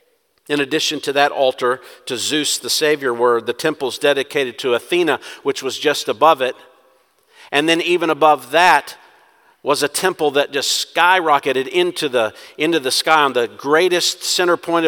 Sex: male